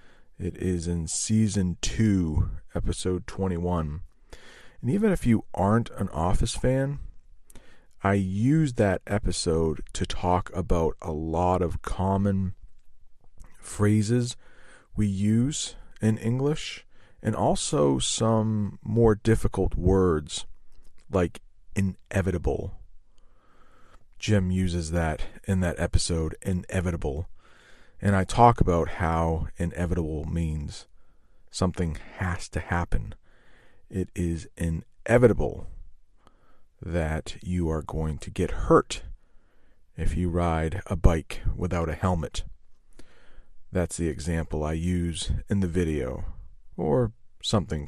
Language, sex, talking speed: English, male, 105 wpm